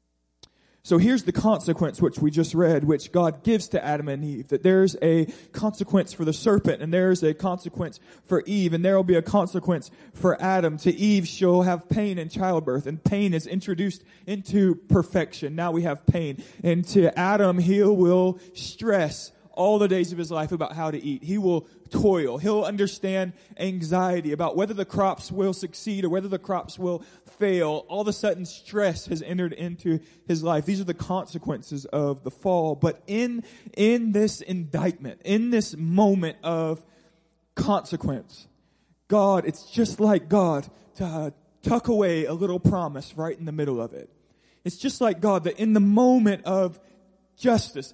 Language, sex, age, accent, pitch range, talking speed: English, male, 20-39, American, 165-200 Hz, 180 wpm